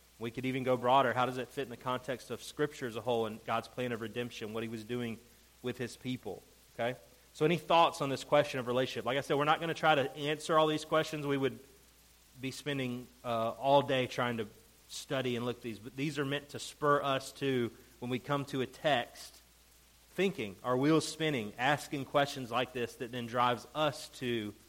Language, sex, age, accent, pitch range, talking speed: English, male, 30-49, American, 110-140 Hz, 225 wpm